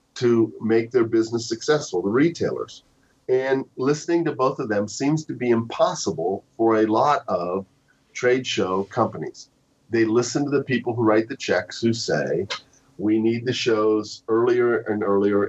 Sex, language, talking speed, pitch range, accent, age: male, English, 165 wpm, 110-140 Hz, American, 50-69